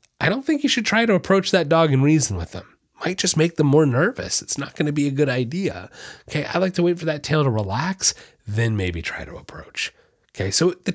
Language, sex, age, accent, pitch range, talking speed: English, male, 30-49, American, 110-155 Hz, 245 wpm